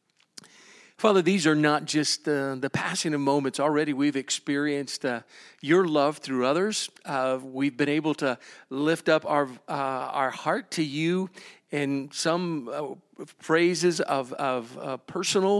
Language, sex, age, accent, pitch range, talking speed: English, male, 50-69, American, 140-165 Hz, 150 wpm